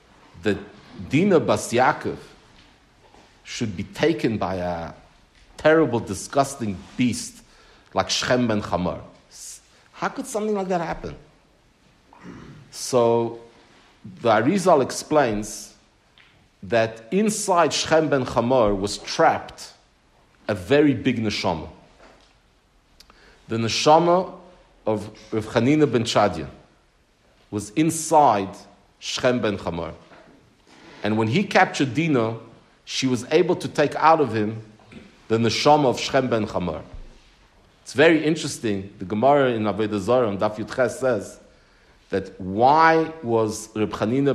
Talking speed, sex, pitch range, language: 115 wpm, male, 105-145 Hz, English